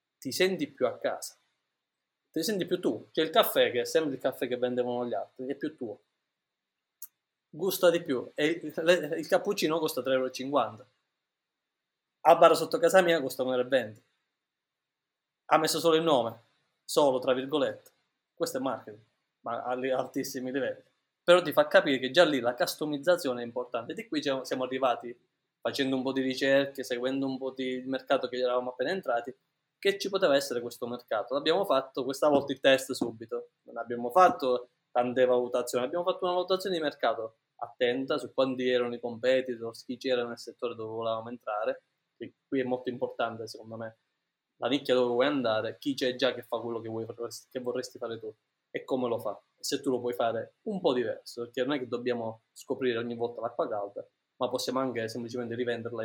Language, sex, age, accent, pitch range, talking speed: Italian, male, 20-39, native, 120-150 Hz, 185 wpm